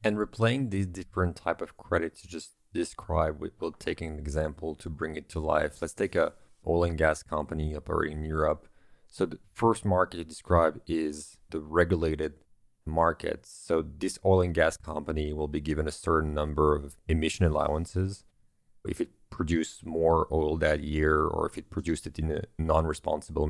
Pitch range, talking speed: 80-95 Hz, 175 wpm